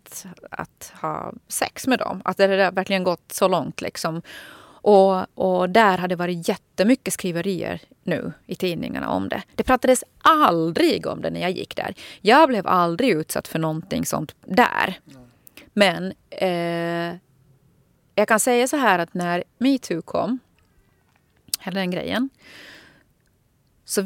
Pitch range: 165-195 Hz